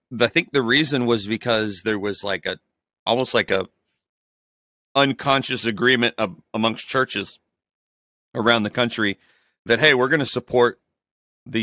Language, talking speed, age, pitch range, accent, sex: English, 145 wpm, 40-59, 100-120 Hz, American, male